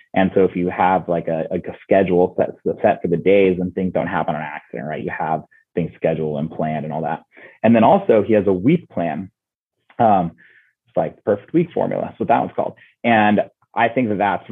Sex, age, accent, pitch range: male, 30-49, American, 85-100 Hz